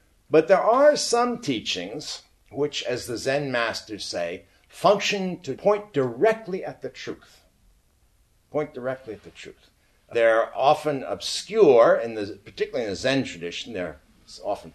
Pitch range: 115-165 Hz